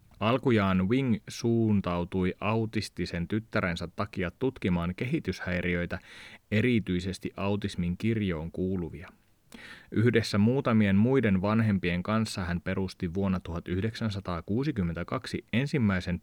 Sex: male